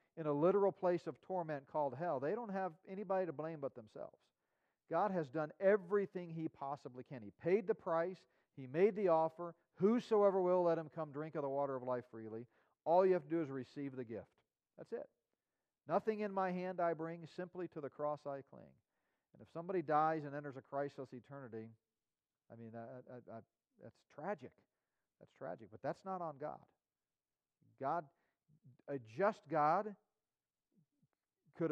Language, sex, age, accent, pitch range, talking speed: English, male, 40-59, American, 135-180 Hz, 170 wpm